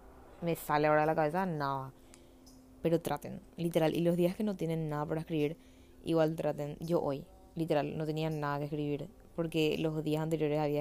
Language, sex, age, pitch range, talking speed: Spanish, female, 20-39, 135-170 Hz, 185 wpm